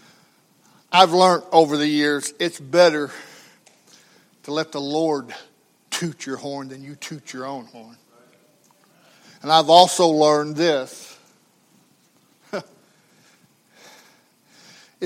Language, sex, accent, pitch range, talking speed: English, male, American, 145-215 Hz, 100 wpm